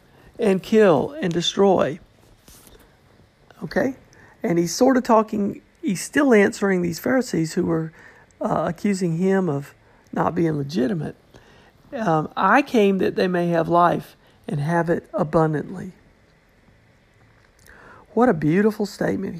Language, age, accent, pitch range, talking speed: English, 50-69, American, 145-195 Hz, 125 wpm